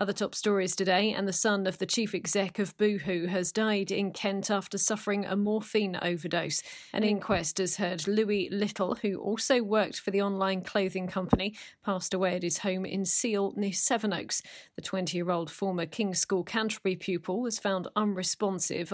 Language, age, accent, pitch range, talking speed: English, 40-59, British, 180-210 Hz, 175 wpm